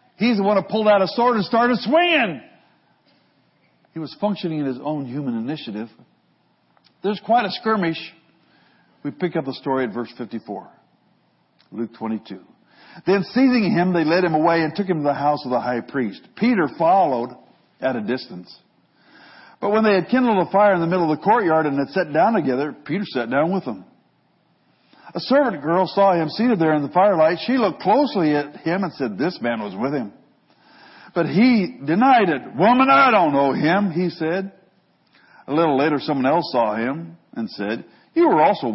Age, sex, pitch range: 60-79, male, 150-230 Hz